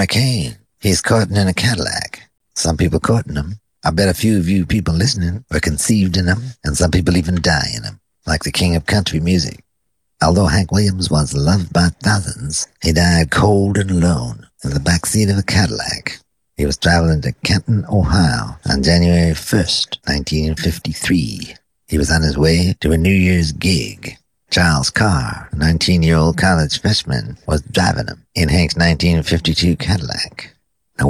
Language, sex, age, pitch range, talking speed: English, male, 50-69, 75-95 Hz, 170 wpm